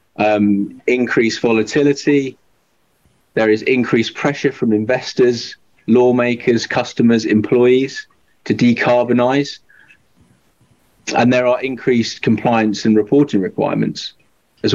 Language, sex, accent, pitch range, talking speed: English, male, British, 105-130 Hz, 95 wpm